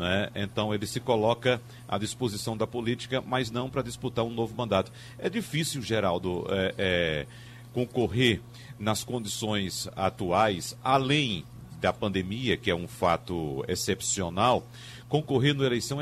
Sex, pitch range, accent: male, 115-140 Hz, Brazilian